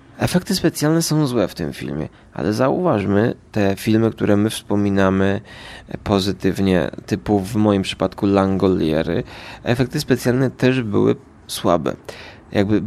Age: 20-39